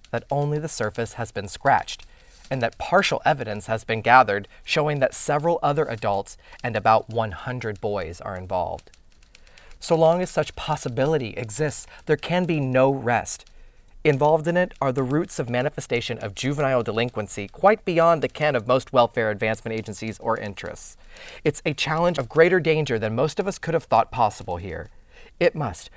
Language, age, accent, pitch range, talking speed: English, 30-49, American, 115-165 Hz, 175 wpm